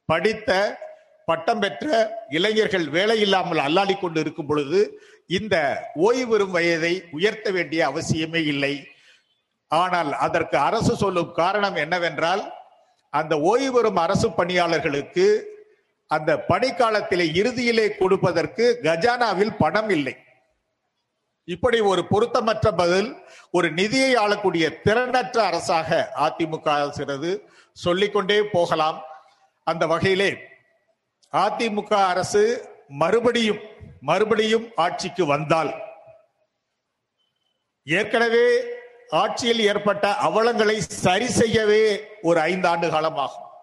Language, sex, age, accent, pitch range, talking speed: Tamil, male, 50-69, native, 165-235 Hz, 90 wpm